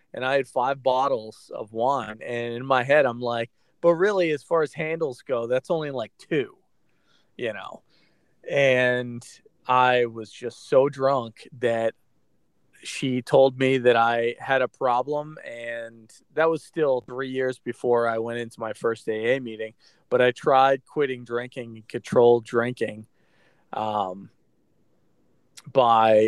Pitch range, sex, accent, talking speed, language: 115-135 Hz, male, American, 145 wpm, English